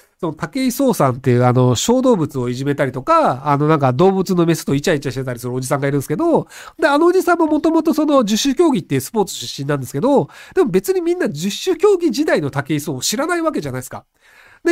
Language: Japanese